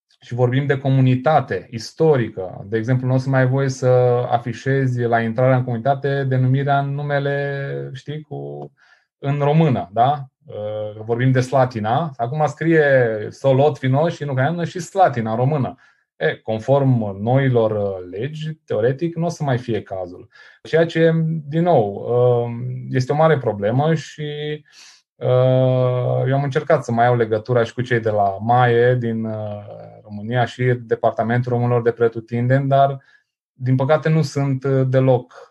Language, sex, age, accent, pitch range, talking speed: Romanian, male, 20-39, native, 115-140 Hz, 150 wpm